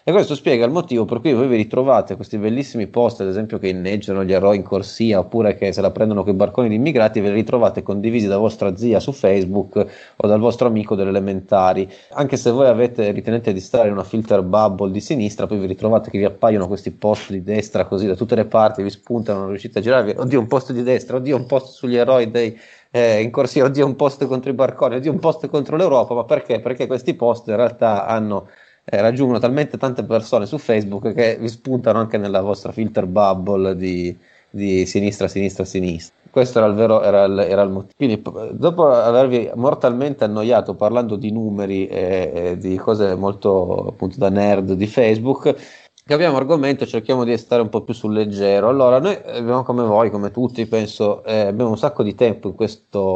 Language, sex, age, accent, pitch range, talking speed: Italian, male, 30-49, native, 100-120 Hz, 215 wpm